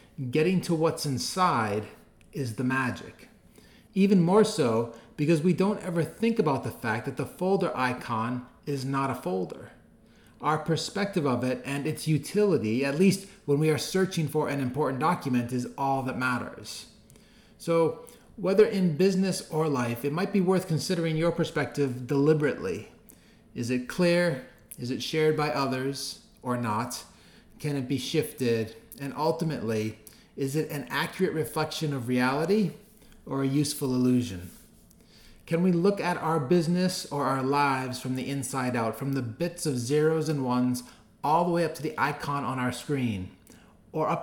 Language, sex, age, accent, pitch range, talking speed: English, male, 30-49, American, 125-165 Hz, 165 wpm